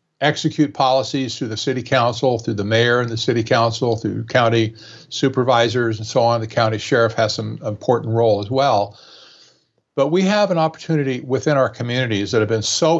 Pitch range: 110-150 Hz